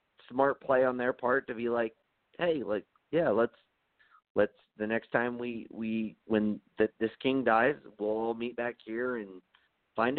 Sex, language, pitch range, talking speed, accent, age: male, English, 95-125 Hz, 175 wpm, American, 50-69